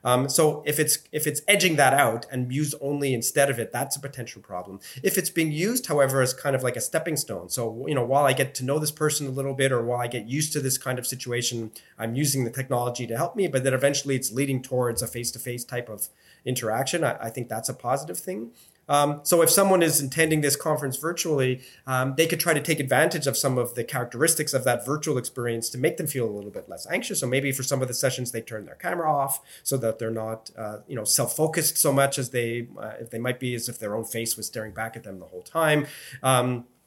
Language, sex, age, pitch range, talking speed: English, male, 30-49, 125-150 Hz, 250 wpm